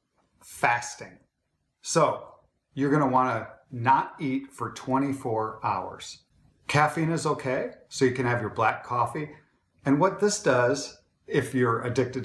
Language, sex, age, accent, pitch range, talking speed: English, male, 40-59, American, 115-135 Hz, 140 wpm